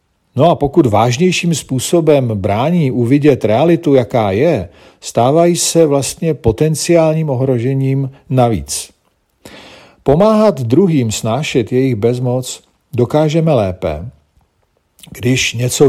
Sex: male